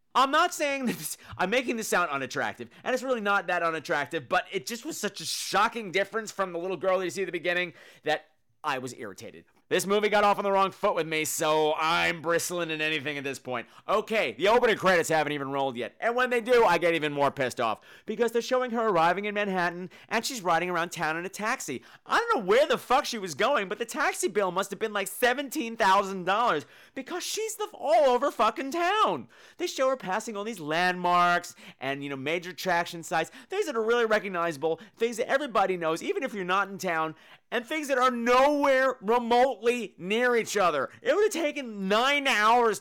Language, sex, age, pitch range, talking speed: English, male, 30-49, 175-265 Hz, 215 wpm